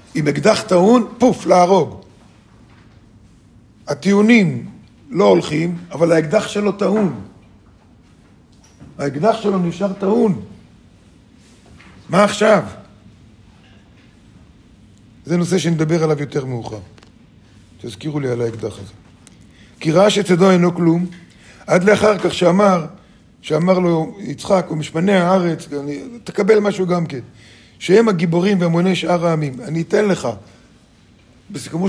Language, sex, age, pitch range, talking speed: Hebrew, male, 50-69, 120-185 Hz, 110 wpm